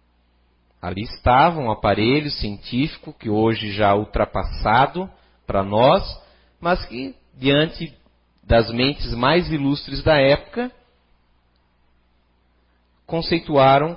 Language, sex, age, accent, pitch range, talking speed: Portuguese, male, 40-59, Brazilian, 95-140 Hz, 90 wpm